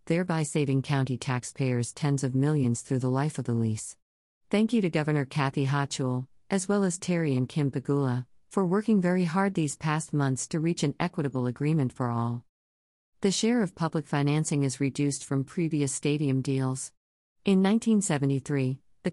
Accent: American